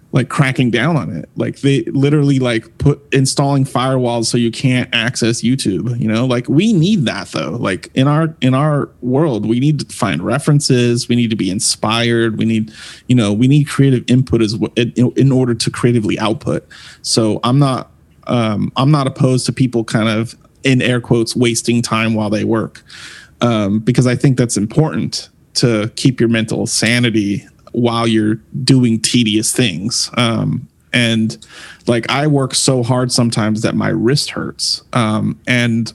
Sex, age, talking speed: male, 30-49, 175 wpm